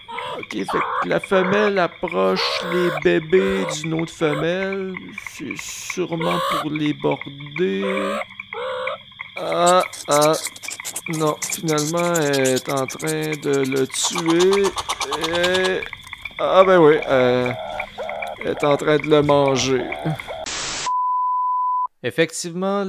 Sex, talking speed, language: male, 105 wpm, French